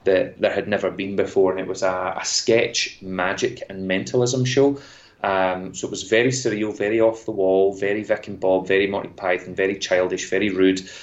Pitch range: 95-105 Hz